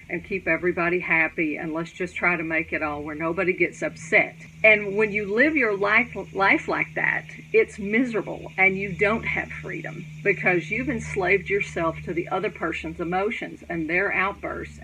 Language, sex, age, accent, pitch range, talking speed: English, female, 50-69, American, 165-215 Hz, 180 wpm